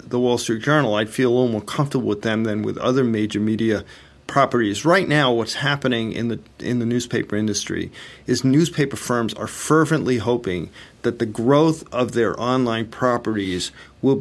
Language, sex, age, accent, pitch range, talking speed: English, male, 40-59, American, 115-145 Hz, 175 wpm